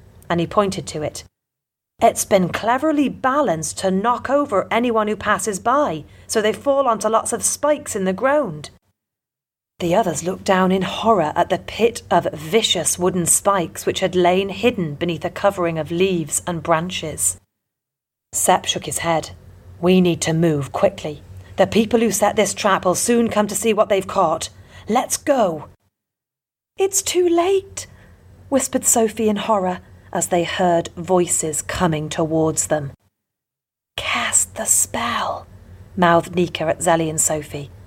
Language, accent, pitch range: English, British, 145-215 Hz